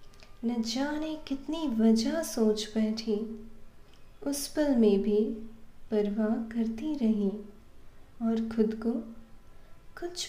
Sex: female